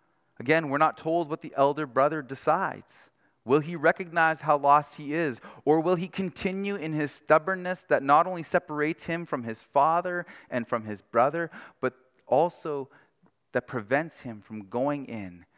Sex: male